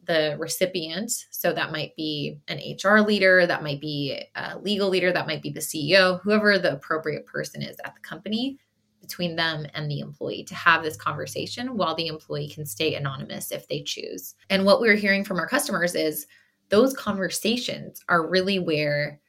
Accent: American